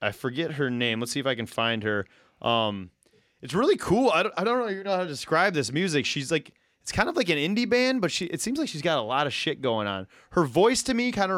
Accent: American